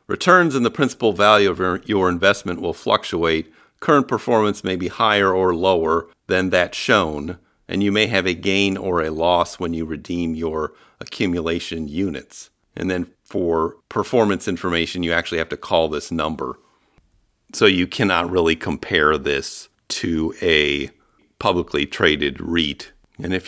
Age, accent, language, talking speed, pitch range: 50-69, American, English, 155 wpm, 80-105 Hz